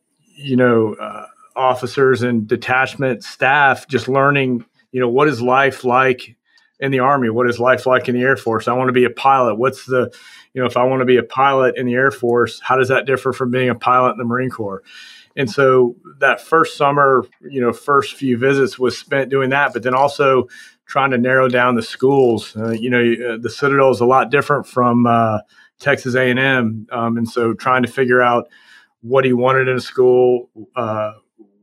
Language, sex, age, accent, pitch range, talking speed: English, male, 30-49, American, 120-130 Hz, 205 wpm